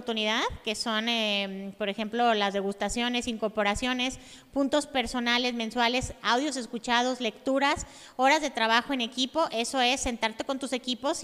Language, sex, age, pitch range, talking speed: Spanish, female, 30-49, 235-280 Hz, 140 wpm